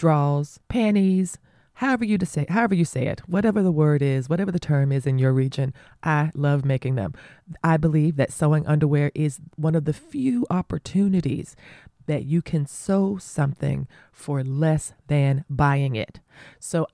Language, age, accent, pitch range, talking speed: English, 30-49, American, 145-175 Hz, 165 wpm